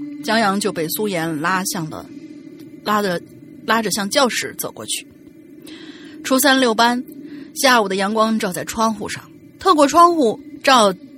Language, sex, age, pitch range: Chinese, female, 30-49, 200-295 Hz